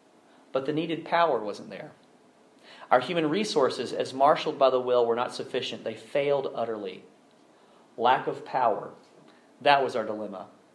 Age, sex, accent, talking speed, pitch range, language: 40-59, male, American, 145 wpm, 120-160 Hz, English